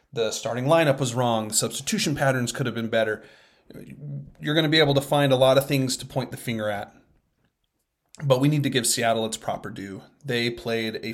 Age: 30-49